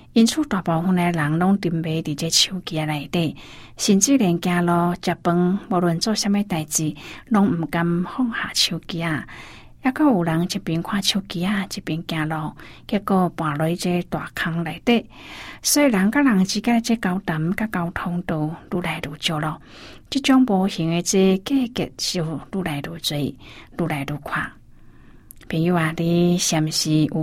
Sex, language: female, Chinese